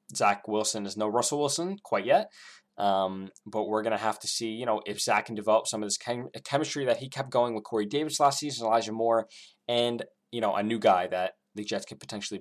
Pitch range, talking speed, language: 105-120 Hz, 230 wpm, English